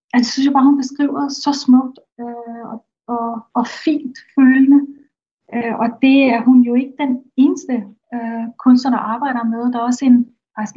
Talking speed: 190 wpm